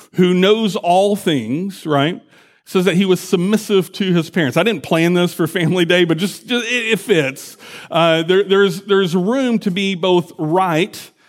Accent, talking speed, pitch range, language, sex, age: American, 185 wpm, 145-180 Hz, English, male, 40-59